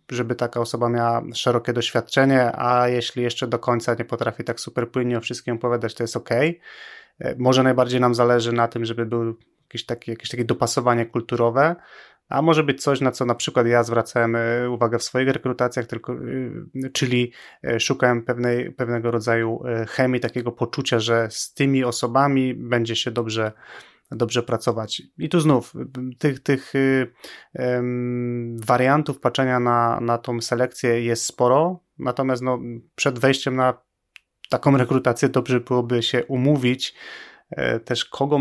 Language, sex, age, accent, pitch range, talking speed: Polish, male, 20-39, native, 115-125 Hz, 145 wpm